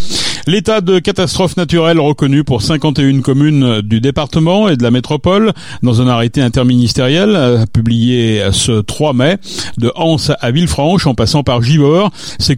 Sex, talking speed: male, 150 wpm